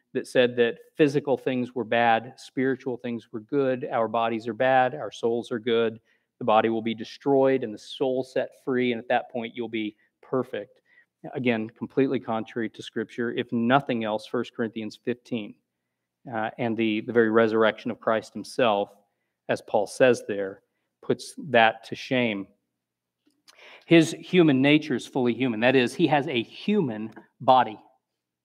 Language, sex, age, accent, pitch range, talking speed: English, male, 40-59, American, 115-145 Hz, 160 wpm